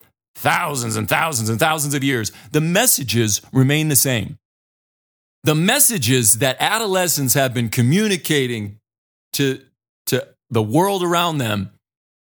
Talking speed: 120 wpm